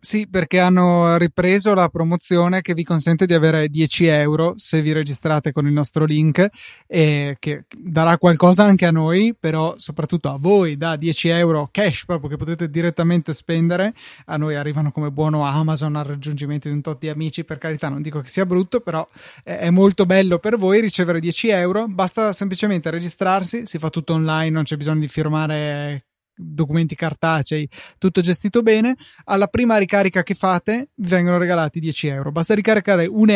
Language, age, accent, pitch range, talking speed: Italian, 20-39, native, 155-195 Hz, 180 wpm